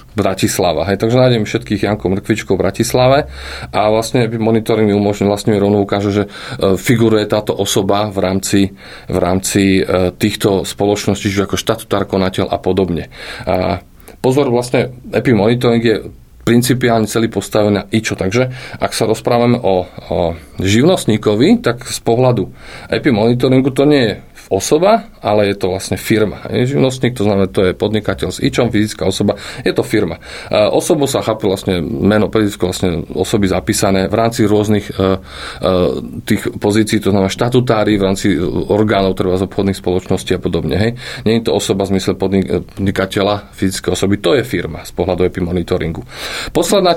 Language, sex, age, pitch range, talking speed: Slovak, male, 40-59, 95-120 Hz, 165 wpm